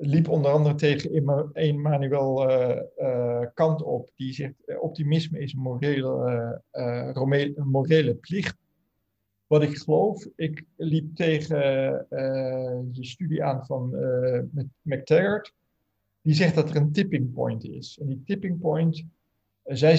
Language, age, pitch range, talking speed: Dutch, 50-69, 130-155 Hz, 115 wpm